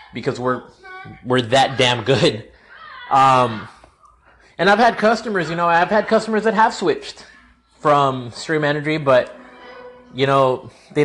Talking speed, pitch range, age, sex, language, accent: 140 wpm, 135-180 Hz, 30-49, male, English, American